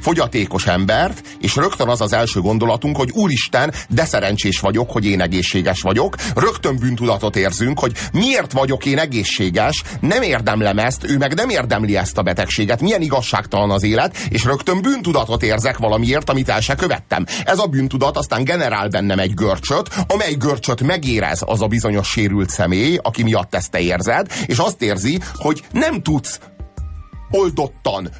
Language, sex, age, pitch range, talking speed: Hungarian, male, 30-49, 105-150 Hz, 160 wpm